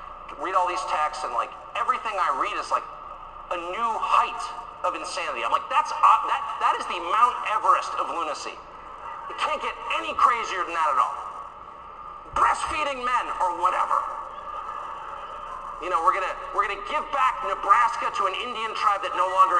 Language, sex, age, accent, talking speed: English, male, 50-69, American, 170 wpm